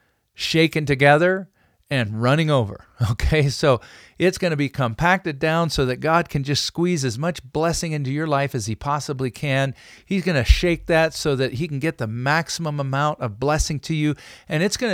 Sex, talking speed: male, 195 wpm